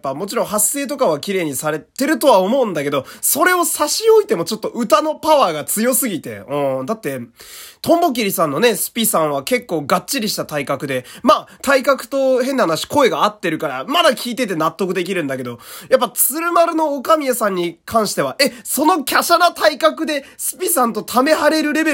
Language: Japanese